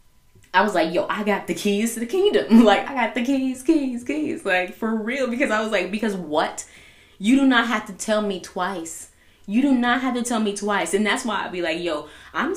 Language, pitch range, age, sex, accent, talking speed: English, 165-220 Hz, 20-39, female, American, 245 wpm